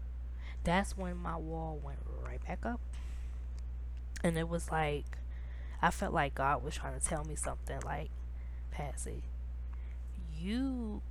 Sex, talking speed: female, 135 wpm